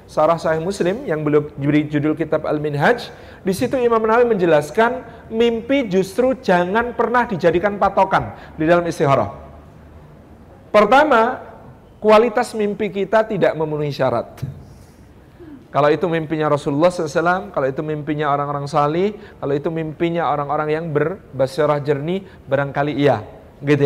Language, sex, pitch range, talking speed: Indonesian, male, 160-250 Hz, 120 wpm